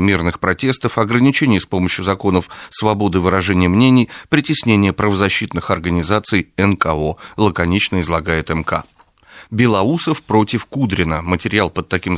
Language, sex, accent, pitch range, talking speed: Russian, male, native, 90-115 Hz, 110 wpm